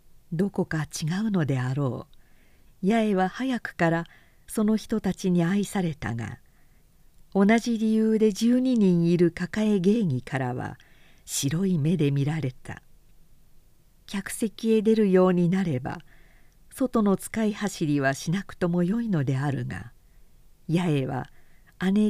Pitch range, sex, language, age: 150-215 Hz, female, Japanese, 50-69